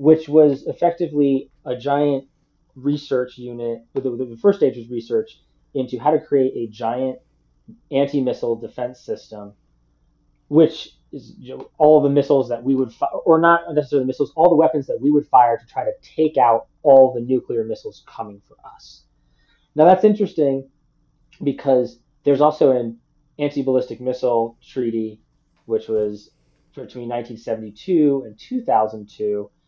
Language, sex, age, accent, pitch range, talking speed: English, male, 20-39, American, 120-150 Hz, 145 wpm